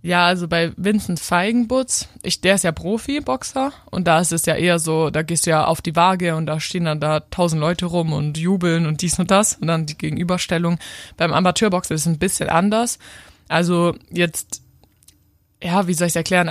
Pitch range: 160-185 Hz